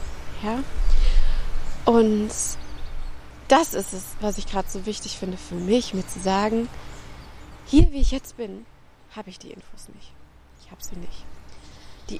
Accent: German